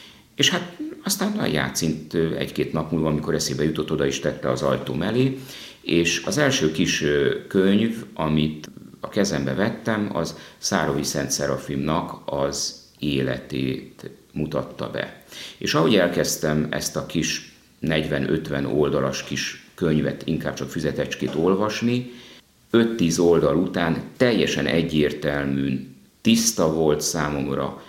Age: 50-69